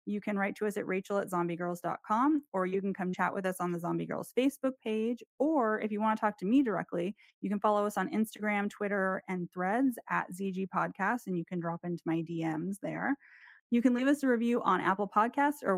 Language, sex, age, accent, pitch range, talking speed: English, female, 20-39, American, 180-230 Hz, 230 wpm